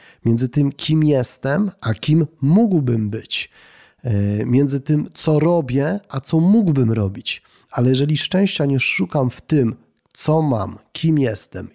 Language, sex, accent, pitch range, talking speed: Polish, male, native, 115-140 Hz, 140 wpm